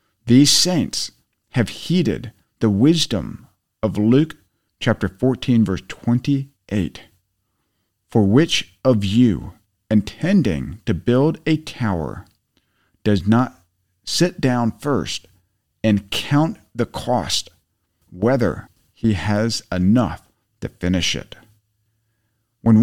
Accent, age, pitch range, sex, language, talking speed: American, 50-69, 95-125 Hz, male, English, 100 wpm